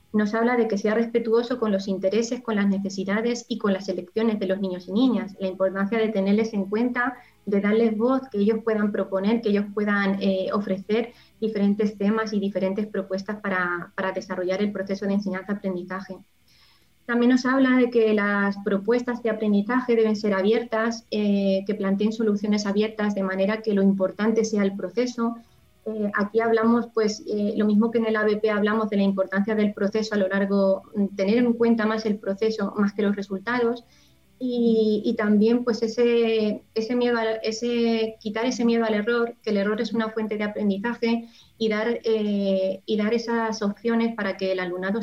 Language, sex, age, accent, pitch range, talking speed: Spanish, female, 20-39, Spanish, 195-225 Hz, 185 wpm